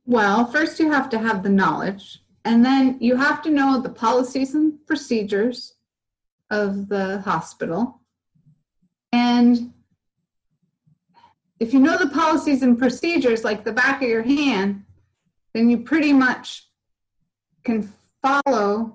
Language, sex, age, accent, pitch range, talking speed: English, female, 30-49, American, 215-265 Hz, 130 wpm